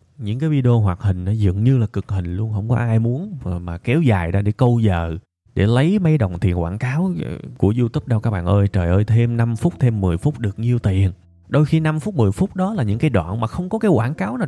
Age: 20-39